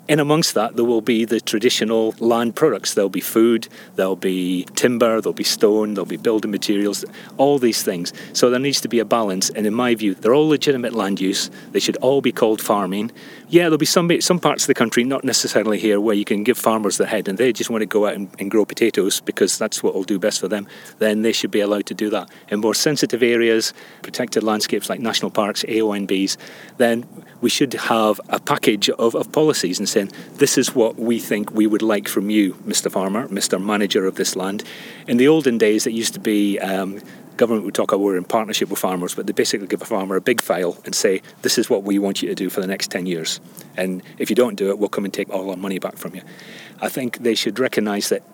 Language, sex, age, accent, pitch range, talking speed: English, male, 30-49, British, 100-120 Hz, 245 wpm